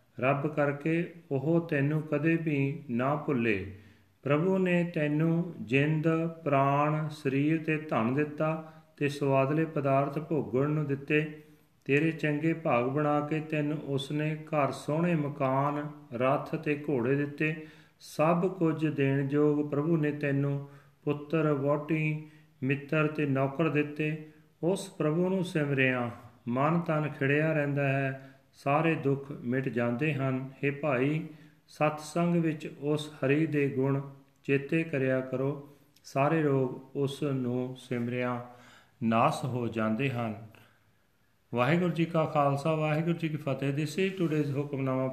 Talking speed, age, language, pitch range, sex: 120 wpm, 40-59, Punjabi, 135-155 Hz, male